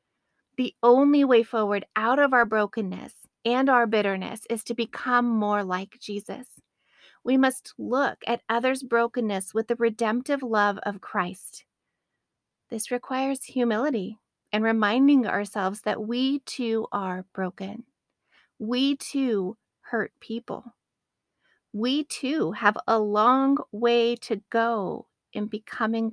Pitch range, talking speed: 205-250 Hz, 125 wpm